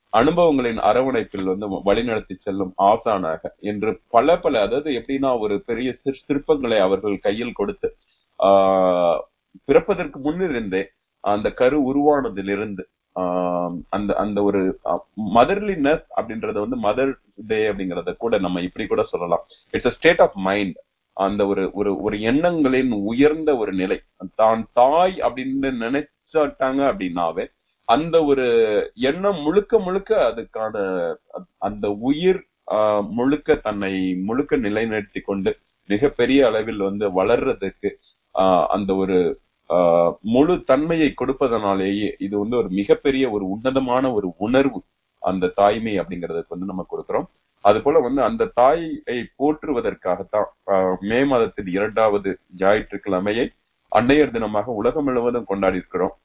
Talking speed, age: 115 wpm, 30-49